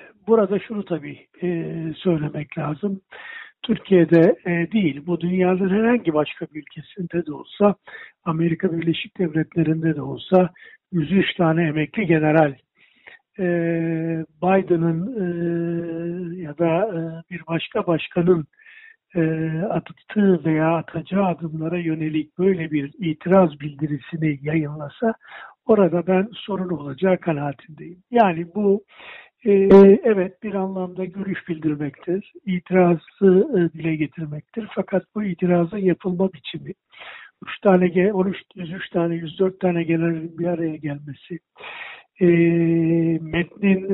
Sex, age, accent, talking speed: male, 60-79, native, 110 wpm